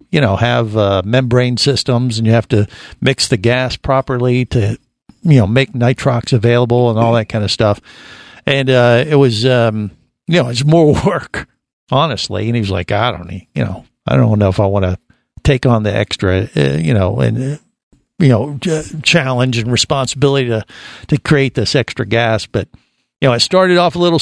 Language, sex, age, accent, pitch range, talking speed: English, male, 50-69, American, 115-140 Hz, 205 wpm